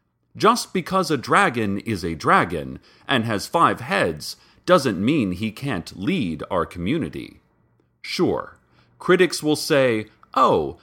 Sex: male